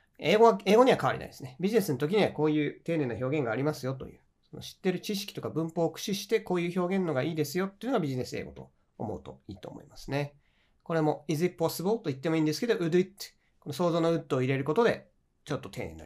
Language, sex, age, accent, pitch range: Japanese, male, 40-59, native, 115-180 Hz